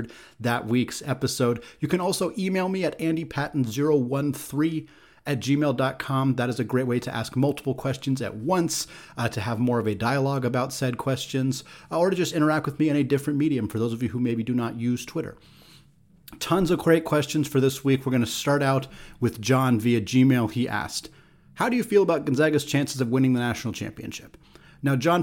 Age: 30-49